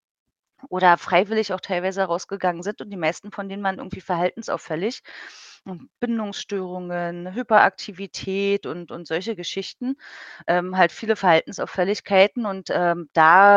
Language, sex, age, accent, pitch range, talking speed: German, female, 30-49, German, 180-215 Hz, 120 wpm